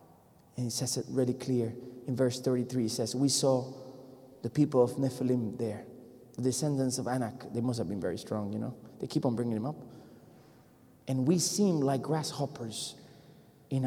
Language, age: English, 30-49